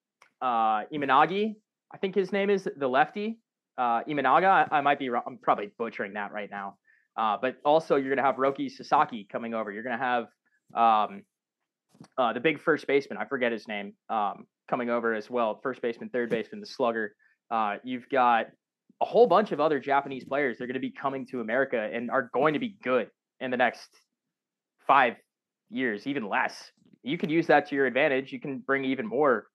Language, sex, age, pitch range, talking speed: English, male, 20-39, 115-145 Hz, 200 wpm